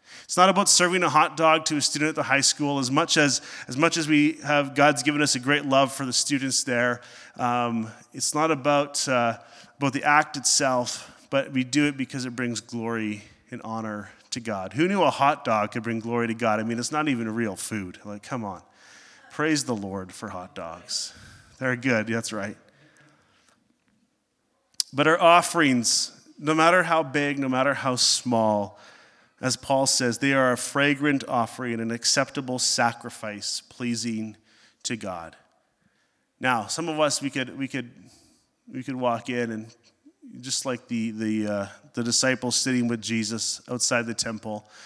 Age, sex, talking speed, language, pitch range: 30-49, male, 180 wpm, English, 110-140 Hz